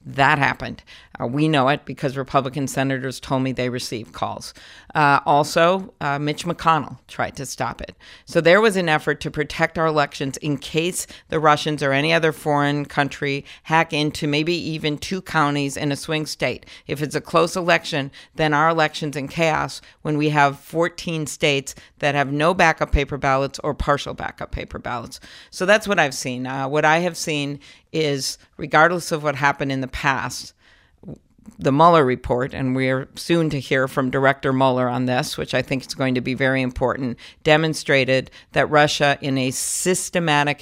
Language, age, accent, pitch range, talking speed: English, 50-69, American, 135-160 Hz, 185 wpm